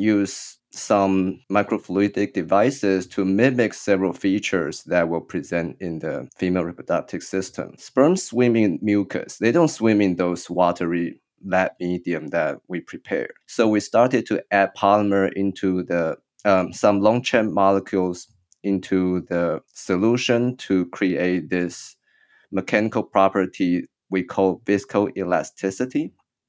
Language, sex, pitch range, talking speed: English, male, 90-110 Hz, 125 wpm